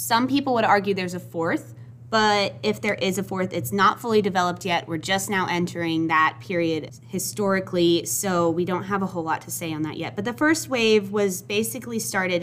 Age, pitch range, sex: 20-39, 160-210 Hz, female